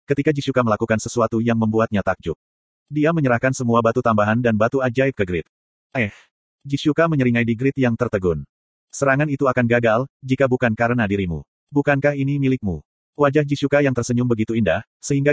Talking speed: 165 wpm